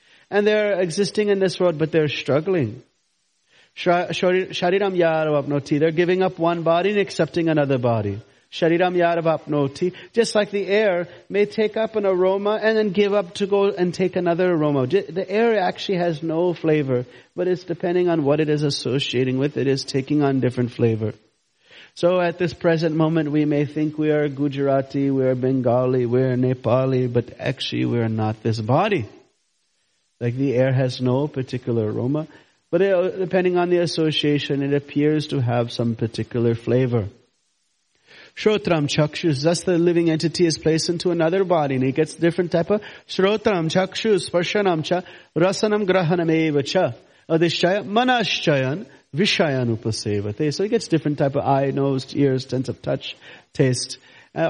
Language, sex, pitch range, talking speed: English, male, 130-185 Hz, 155 wpm